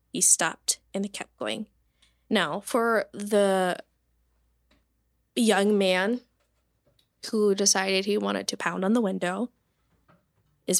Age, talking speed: 10-29, 115 wpm